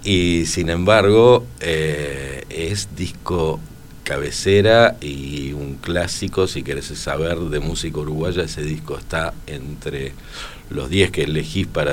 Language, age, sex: Spanish, 50-69, male